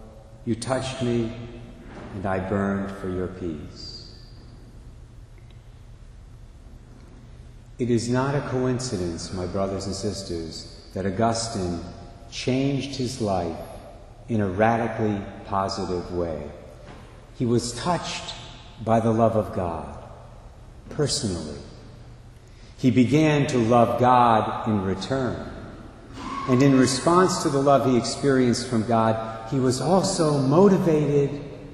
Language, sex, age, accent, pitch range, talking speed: English, male, 50-69, American, 95-120 Hz, 110 wpm